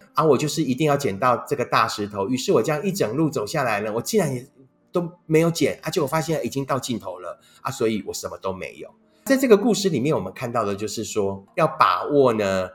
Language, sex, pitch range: Chinese, male, 110-160 Hz